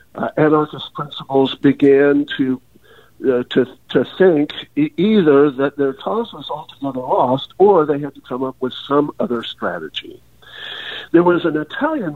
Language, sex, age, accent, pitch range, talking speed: English, male, 60-79, American, 135-210 Hz, 150 wpm